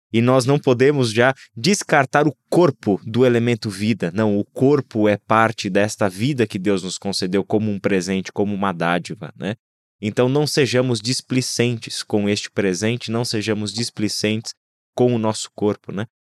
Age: 20-39